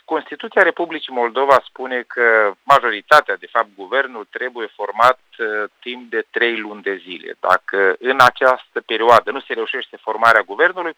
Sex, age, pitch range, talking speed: male, 40-59, 125-175 Hz, 140 wpm